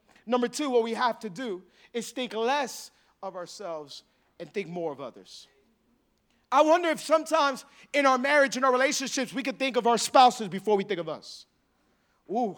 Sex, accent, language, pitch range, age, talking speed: male, American, English, 210-270 Hz, 40-59, 185 wpm